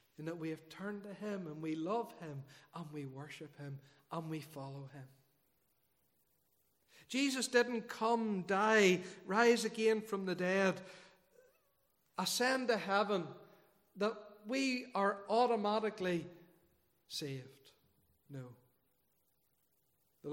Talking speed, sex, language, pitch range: 110 wpm, male, English, 165-210 Hz